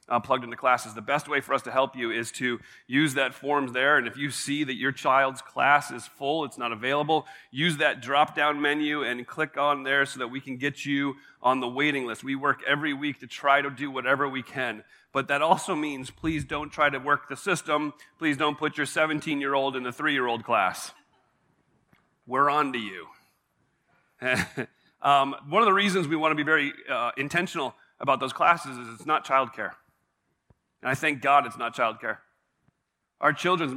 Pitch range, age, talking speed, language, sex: 130-150 Hz, 40-59, 200 wpm, English, male